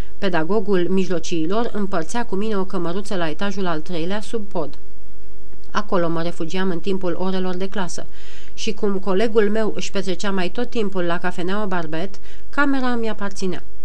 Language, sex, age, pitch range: Romanian, female, 30-49, 175-210 Hz